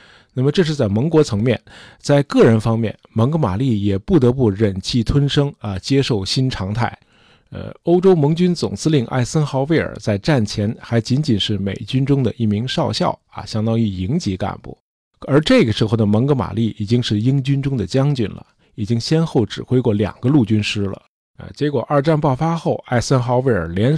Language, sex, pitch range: Chinese, male, 105-140 Hz